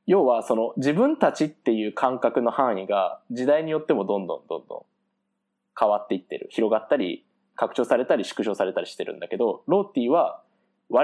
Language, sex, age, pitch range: Japanese, male, 20-39, 125-200 Hz